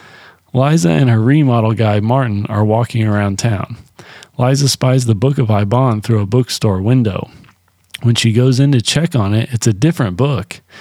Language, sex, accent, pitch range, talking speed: English, male, American, 115-140 Hz, 180 wpm